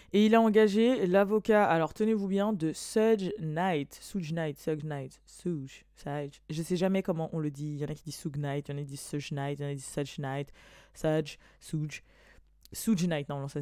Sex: female